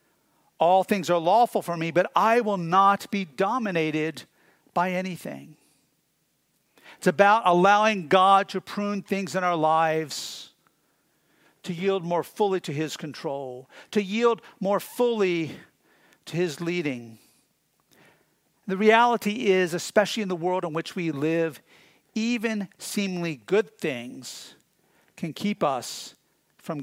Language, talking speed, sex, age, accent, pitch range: English, 125 wpm, male, 50-69, American, 165-200 Hz